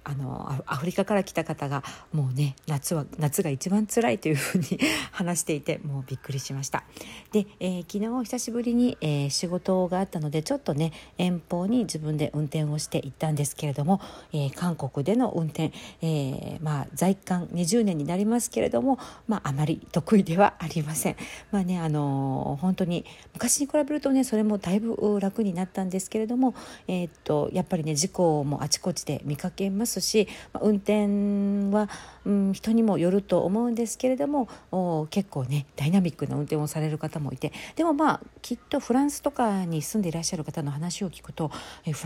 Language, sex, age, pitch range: Japanese, female, 50-69, 150-210 Hz